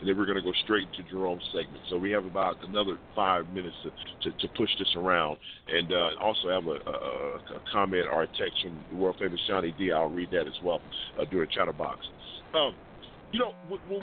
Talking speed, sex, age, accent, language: 220 wpm, male, 50-69, American, English